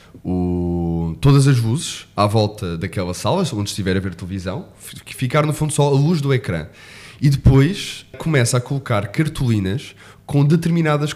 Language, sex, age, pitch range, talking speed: Portuguese, male, 20-39, 110-145 Hz, 155 wpm